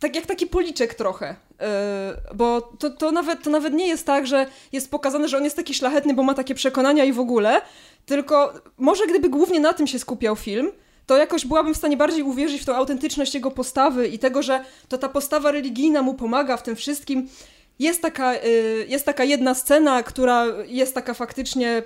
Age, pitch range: 20-39, 240-280 Hz